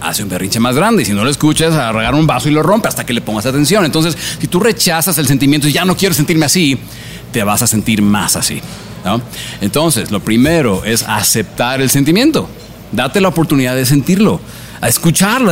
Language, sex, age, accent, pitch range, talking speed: Spanish, male, 40-59, Mexican, 115-160 Hz, 210 wpm